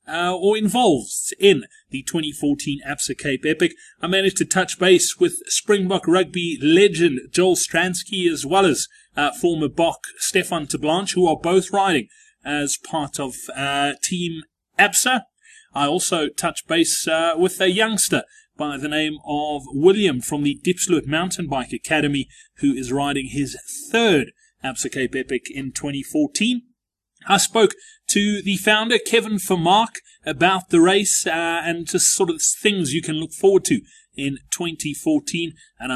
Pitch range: 150-225 Hz